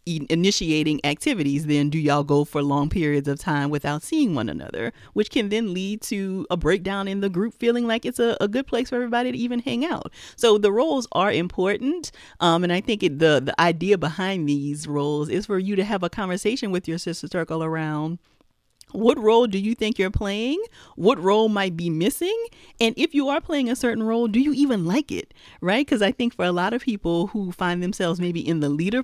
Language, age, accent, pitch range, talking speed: English, 40-59, American, 155-225 Hz, 220 wpm